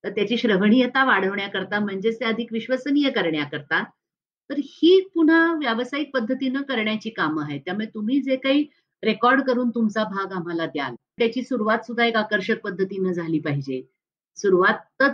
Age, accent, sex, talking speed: 50-69, native, female, 45 wpm